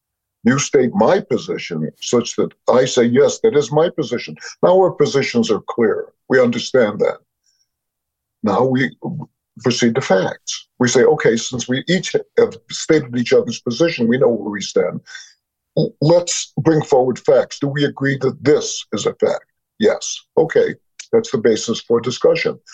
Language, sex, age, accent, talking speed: English, male, 50-69, American, 160 wpm